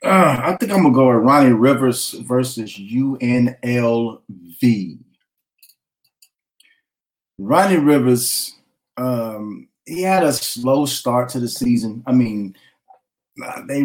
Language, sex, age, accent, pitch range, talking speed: English, male, 30-49, American, 100-125 Hz, 115 wpm